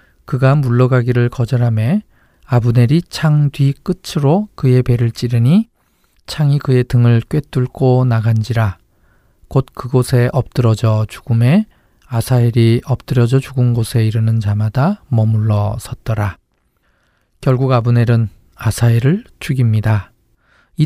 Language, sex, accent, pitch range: Korean, male, native, 115-140 Hz